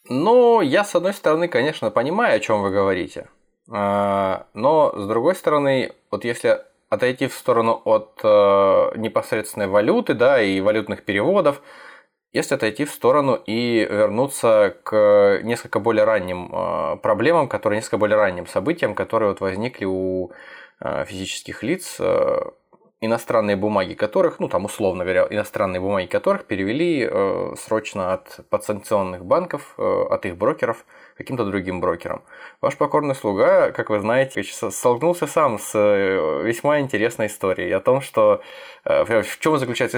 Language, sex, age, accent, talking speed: Russian, male, 20-39, native, 140 wpm